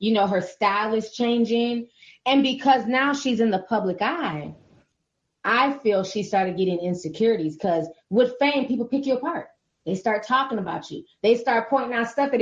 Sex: female